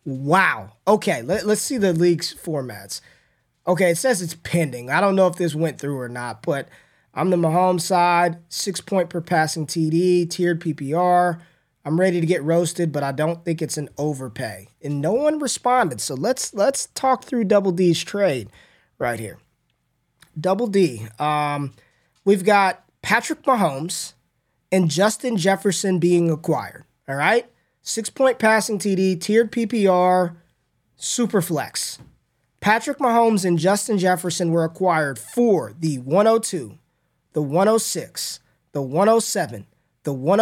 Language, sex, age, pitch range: English, male, 20-39, 150-205 Hz